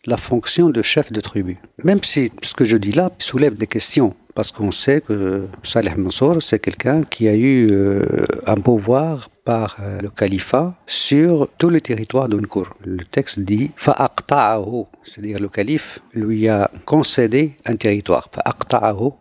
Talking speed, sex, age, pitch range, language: 155 wpm, male, 50-69, 100-135 Hz, French